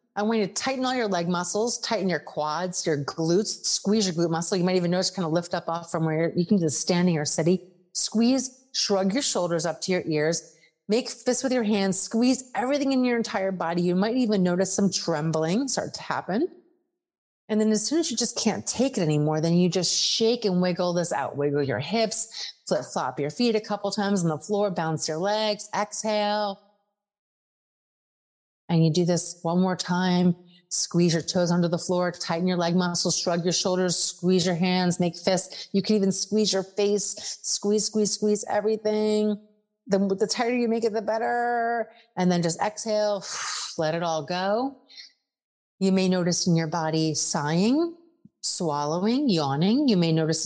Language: English